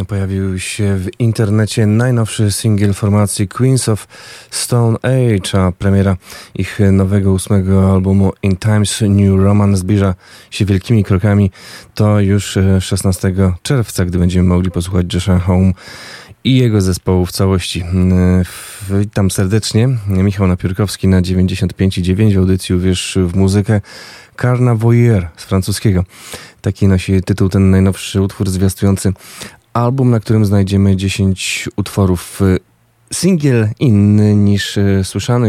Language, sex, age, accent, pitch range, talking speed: Polish, male, 20-39, native, 95-105 Hz, 120 wpm